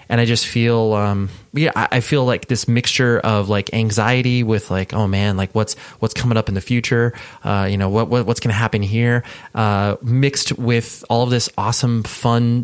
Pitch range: 100-125 Hz